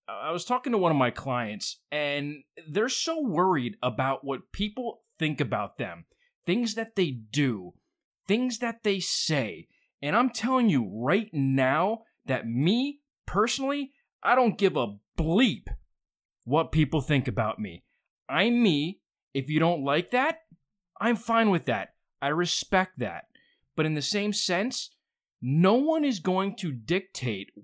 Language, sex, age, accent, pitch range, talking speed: English, male, 20-39, American, 135-230 Hz, 150 wpm